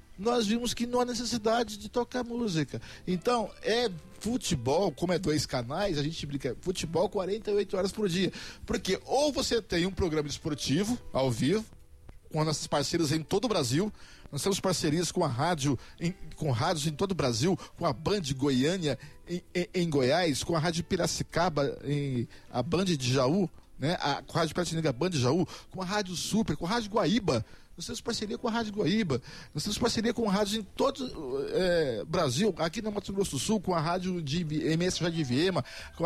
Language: Portuguese